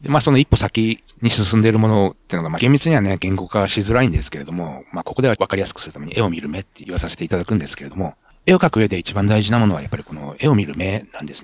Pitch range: 90-120 Hz